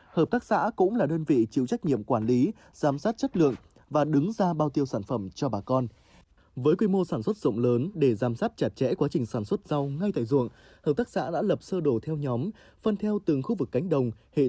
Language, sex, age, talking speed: Vietnamese, male, 20-39, 260 wpm